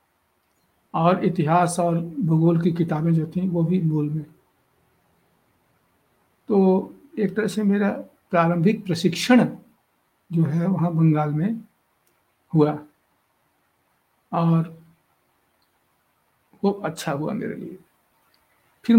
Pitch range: 160-195 Hz